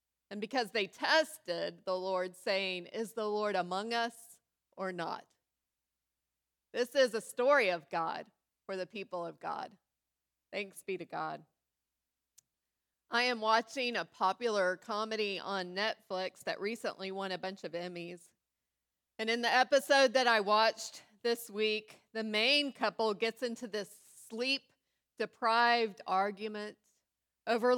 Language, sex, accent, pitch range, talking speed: English, female, American, 190-250 Hz, 135 wpm